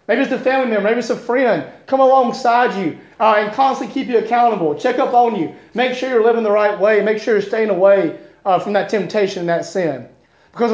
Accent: American